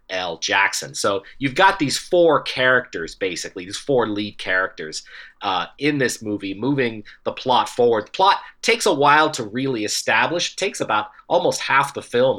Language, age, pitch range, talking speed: English, 30-49, 105-145 Hz, 175 wpm